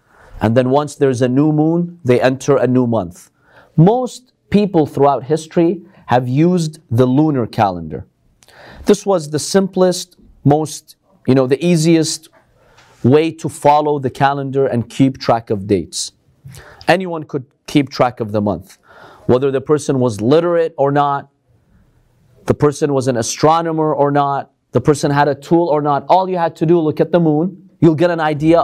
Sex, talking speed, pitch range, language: male, 170 wpm, 135-170 Hz, English